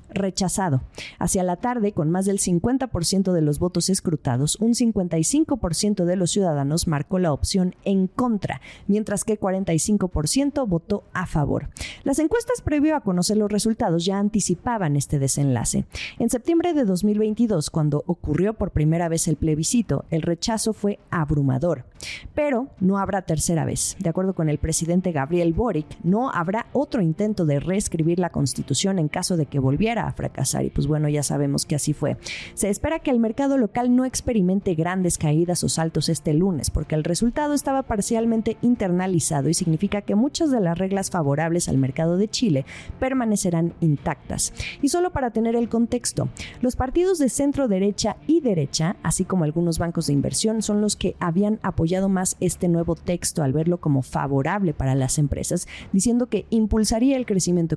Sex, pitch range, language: female, 160-220 Hz, Spanish